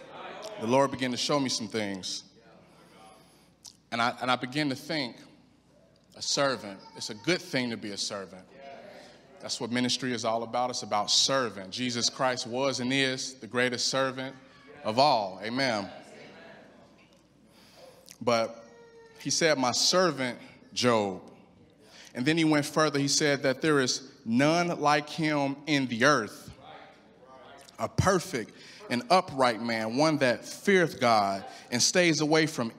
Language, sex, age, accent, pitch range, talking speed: English, male, 30-49, American, 125-165 Hz, 145 wpm